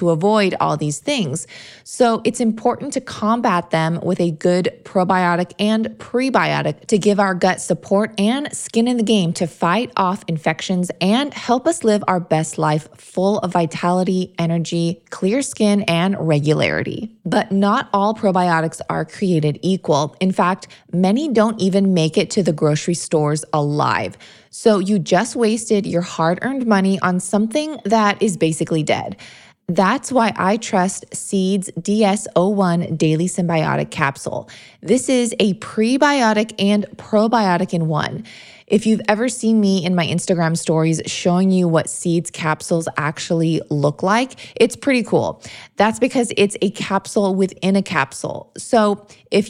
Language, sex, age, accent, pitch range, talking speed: English, female, 20-39, American, 170-215 Hz, 155 wpm